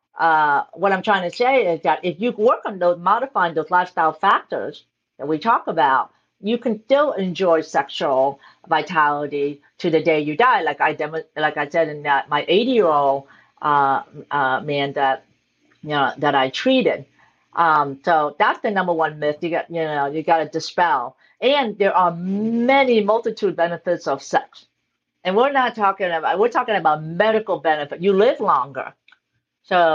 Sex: female